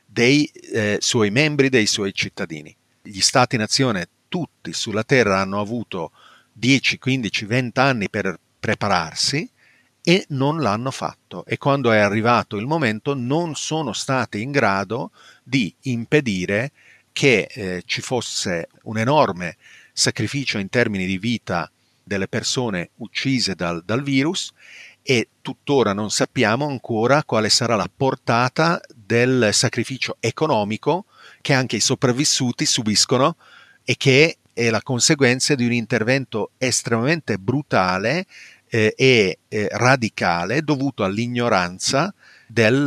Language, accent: Italian, native